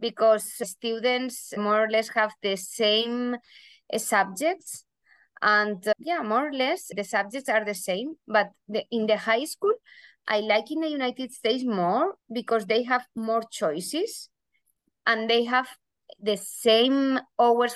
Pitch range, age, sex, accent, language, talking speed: 205-250 Hz, 20-39, female, Spanish, English, 145 wpm